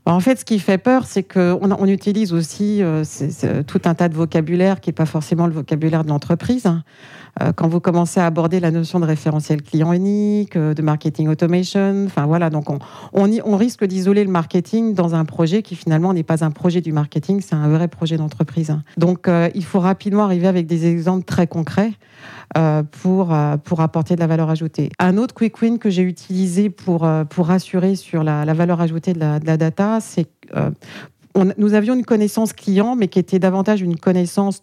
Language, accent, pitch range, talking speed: French, French, 160-195 Hz, 200 wpm